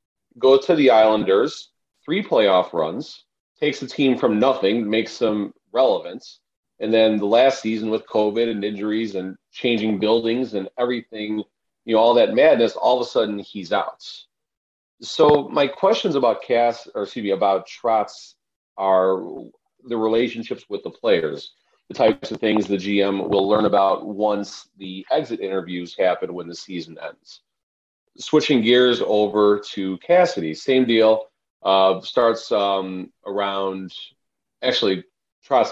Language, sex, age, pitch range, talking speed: English, male, 40-59, 95-120 Hz, 145 wpm